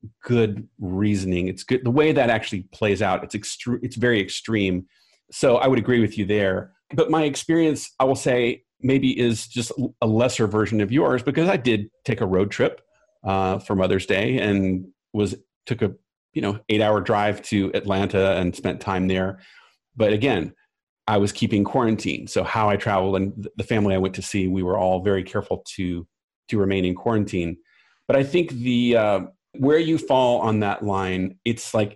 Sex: male